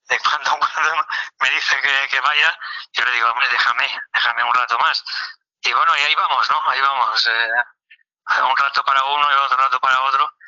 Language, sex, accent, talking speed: Spanish, male, Spanish, 195 wpm